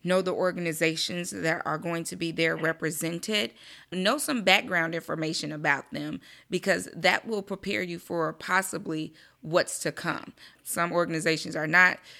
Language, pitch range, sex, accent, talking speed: English, 160-195 Hz, female, American, 150 wpm